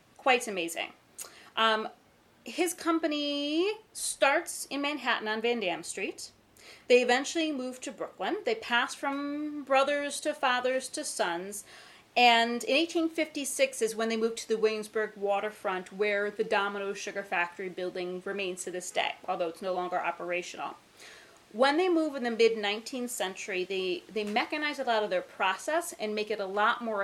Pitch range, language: 195-265 Hz, English